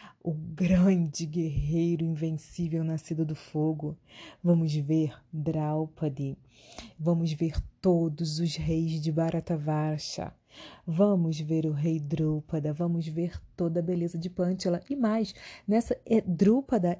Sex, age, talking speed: female, 30-49, 115 wpm